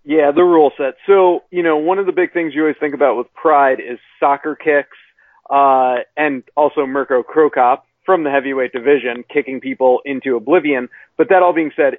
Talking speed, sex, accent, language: 195 wpm, male, American, English